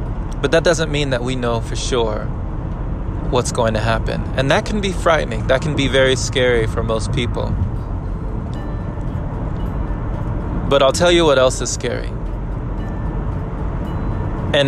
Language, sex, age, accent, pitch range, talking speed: English, male, 20-39, American, 105-130 Hz, 145 wpm